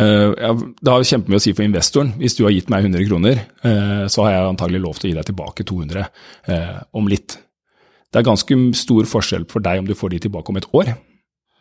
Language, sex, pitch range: English, male, 100-120 Hz